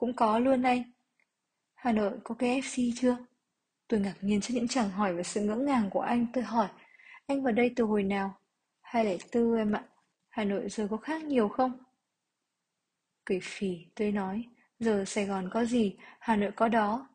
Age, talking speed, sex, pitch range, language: 20-39, 195 wpm, female, 195-240 Hz, Vietnamese